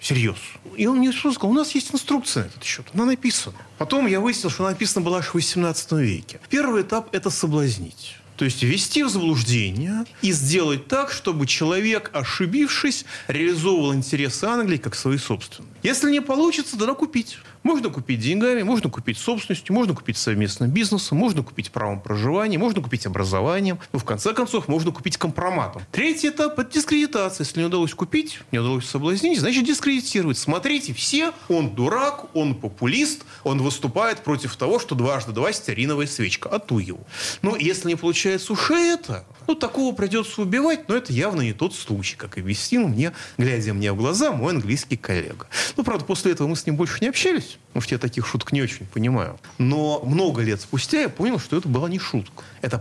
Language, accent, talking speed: Russian, native, 185 wpm